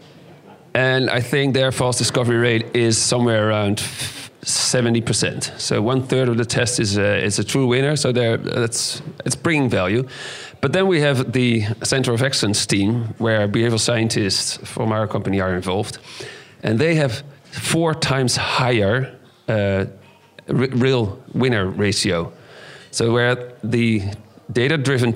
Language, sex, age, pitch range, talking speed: English, male, 40-59, 115-135 Hz, 145 wpm